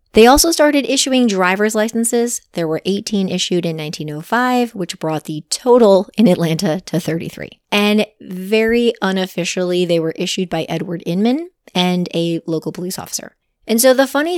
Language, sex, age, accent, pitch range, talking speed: English, female, 30-49, American, 170-225 Hz, 160 wpm